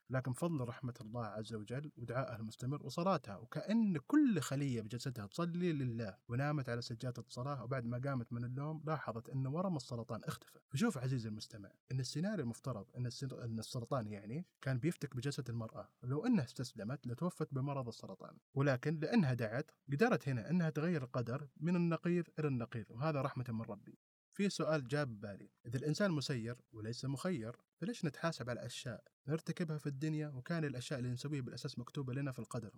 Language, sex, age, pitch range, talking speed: Arabic, male, 30-49, 115-150 Hz, 165 wpm